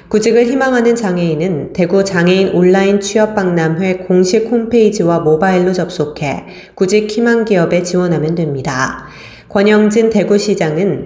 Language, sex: Korean, female